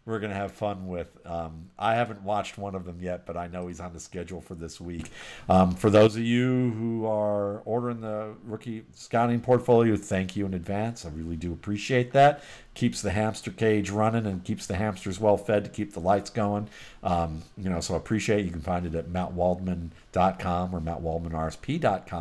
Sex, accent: male, American